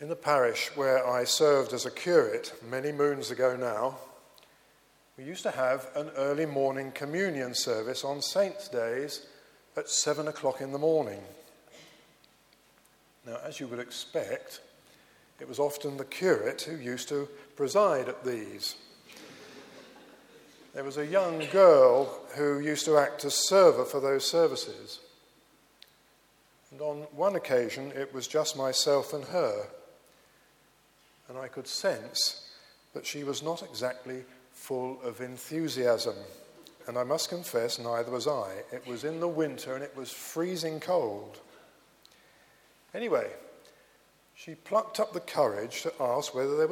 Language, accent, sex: English, British, male